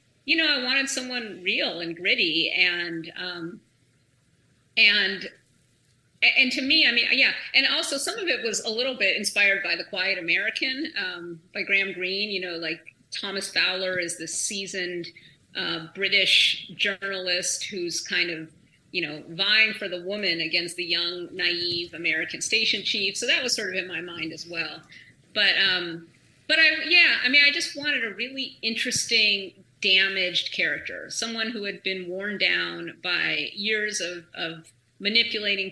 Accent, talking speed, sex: American, 165 wpm, female